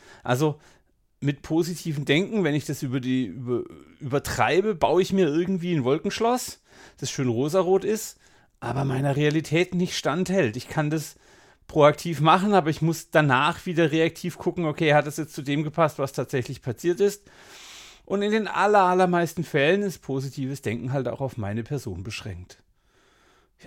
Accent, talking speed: German, 160 wpm